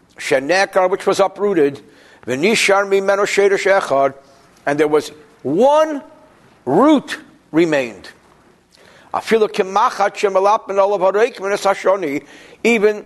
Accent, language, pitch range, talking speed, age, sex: American, English, 145-205 Hz, 65 wpm, 60-79, male